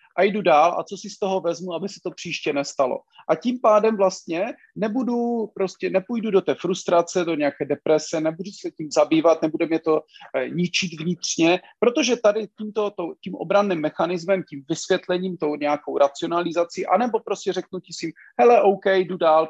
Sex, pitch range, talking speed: male, 160-195 Hz, 180 wpm